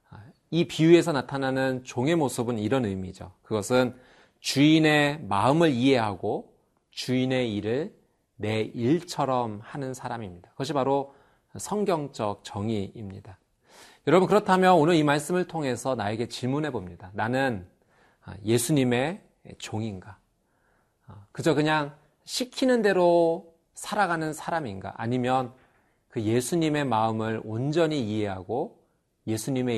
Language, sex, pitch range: Korean, male, 110-155 Hz